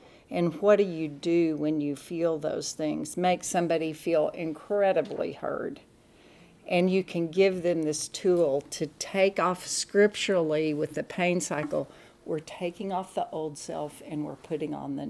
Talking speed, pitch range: 165 wpm, 155-180 Hz